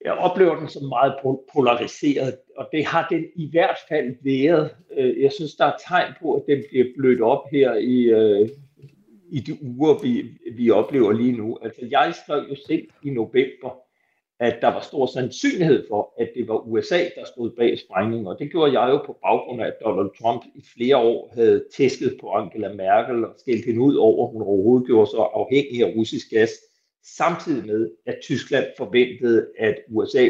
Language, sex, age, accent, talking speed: Danish, male, 60-79, native, 190 wpm